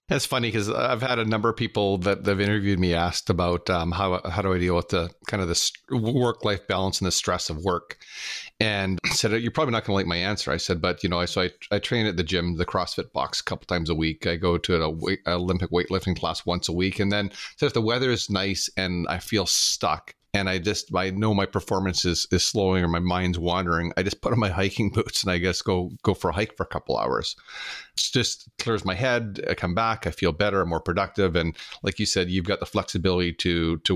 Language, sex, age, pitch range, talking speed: English, male, 40-59, 90-100 Hz, 260 wpm